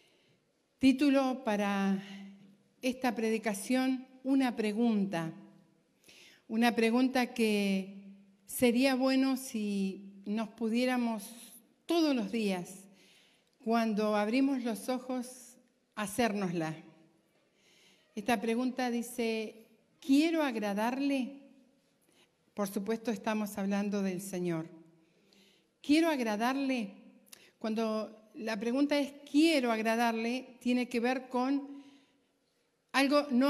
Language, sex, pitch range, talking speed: Spanish, female, 200-255 Hz, 85 wpm